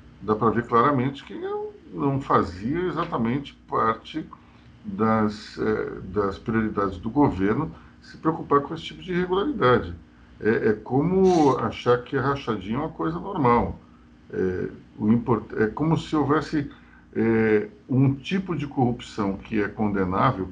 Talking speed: 130 wpm